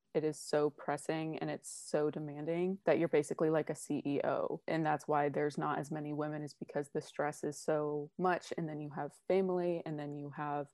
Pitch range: 155-170 Hz